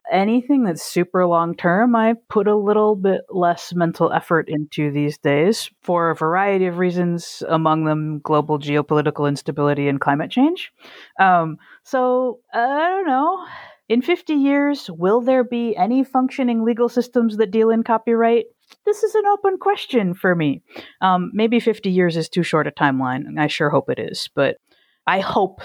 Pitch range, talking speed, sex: 155-225 Hz, 170 wpm, female